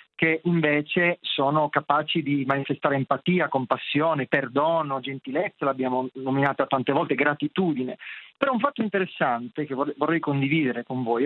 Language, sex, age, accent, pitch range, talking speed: Italian, male, 40-59, native, 135-185 Hz, 130 wpm